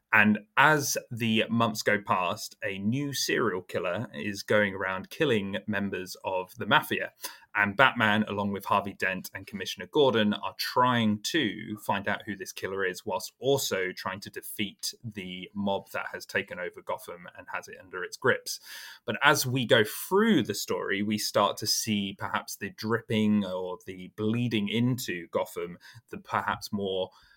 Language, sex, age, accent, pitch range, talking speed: English, male, 20-39, British, 100-125 Hz, 165 wpm